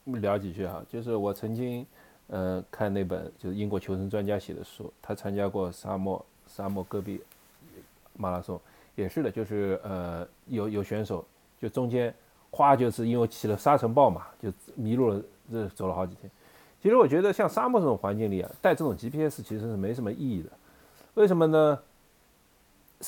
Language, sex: Chinese, male